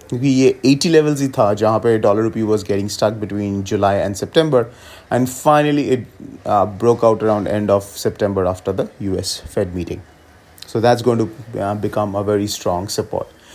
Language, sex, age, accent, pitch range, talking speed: English, male, 30-49, Indian, 105-125 Hz, 160 wpm